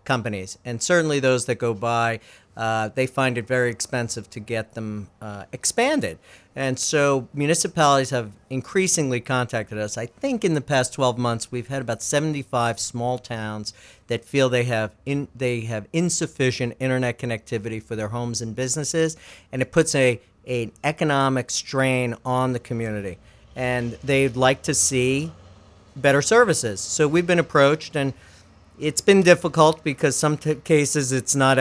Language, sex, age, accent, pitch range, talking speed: English, male, 50-69, American, 115-140 Hz, 160 wpm